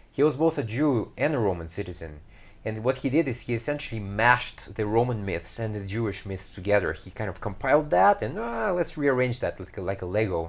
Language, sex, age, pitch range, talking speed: English, male, 30-49, 95-125 Hz, 225 wpm